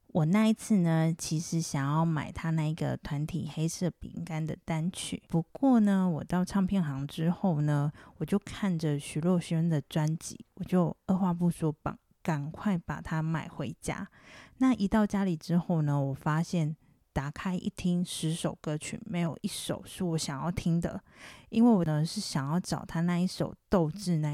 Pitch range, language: 155-185 Hz, Chinese